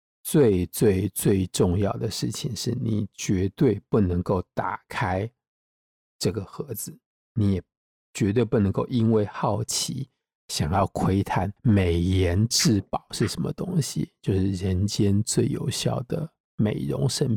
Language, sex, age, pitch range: Chinese, male, 50-69, 95-125 Hz